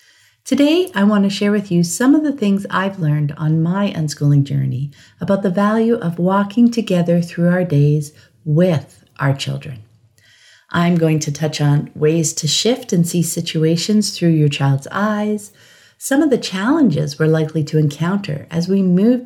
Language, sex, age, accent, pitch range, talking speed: English, female, 50-69, American, 150-210 Hz, 170 wpm